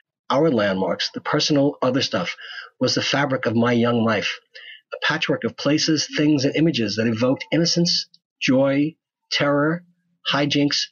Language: English